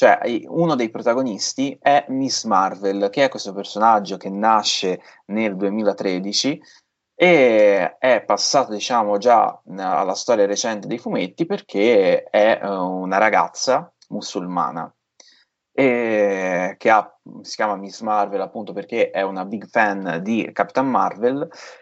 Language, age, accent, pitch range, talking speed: Italian, 20-39, native, 95-120 Hz, 125 wpm